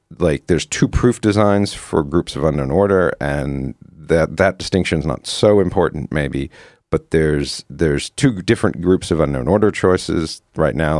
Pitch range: 80-100 Hz